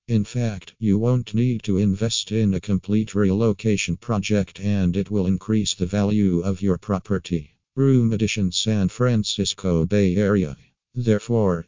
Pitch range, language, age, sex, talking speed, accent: 95-110 Hz, English, 50-69, male, 145 wpm, American